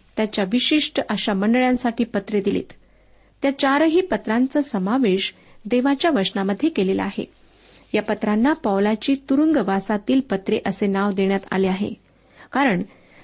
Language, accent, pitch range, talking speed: Marathi, native, 200-270 Hz, 95 wpm